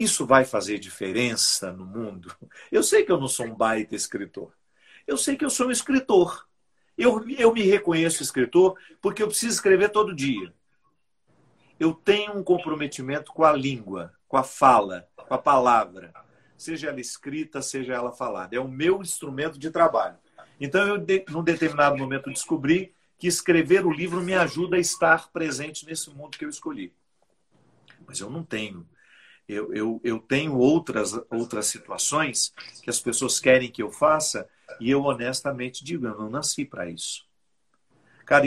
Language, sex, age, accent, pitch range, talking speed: English, male, 50-69, Brazilian, 125-170 Hz, 165 wpm